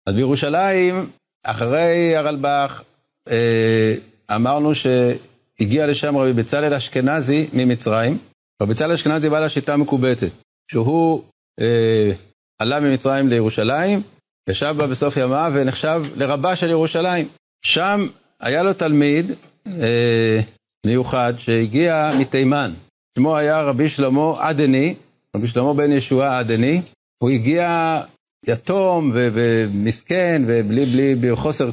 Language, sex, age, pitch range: Hebrew, male, 50-69, 120-160 Hz